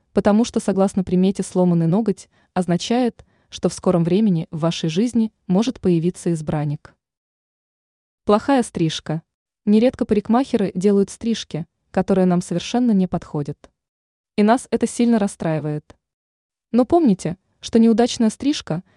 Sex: female